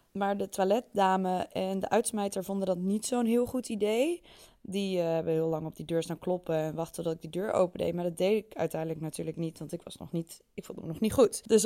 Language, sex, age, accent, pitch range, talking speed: Dutch, female, 20-39, Dutch, 180-225 Hz, 250 wpm